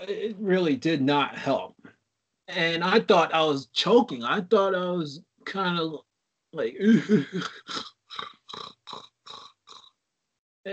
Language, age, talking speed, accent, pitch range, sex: English, 30-49, 100 wpm, American, 140-170 Hz, male